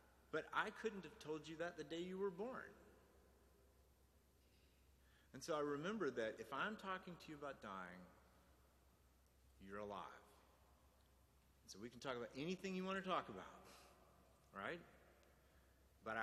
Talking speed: 145 wpm